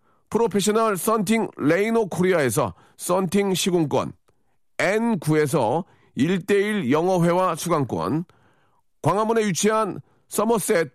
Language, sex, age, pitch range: Korean, male, 40-59, 140-215 Hz